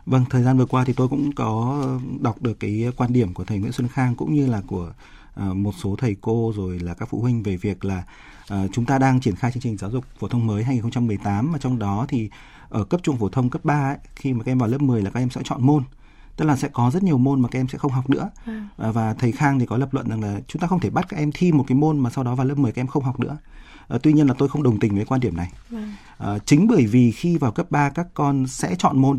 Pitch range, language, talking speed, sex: 115-145 Hz, Vietnamese, 290 wpm, male